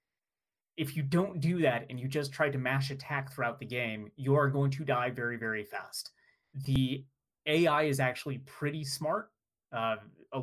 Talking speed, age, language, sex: 180 wpm, 30-49, English, male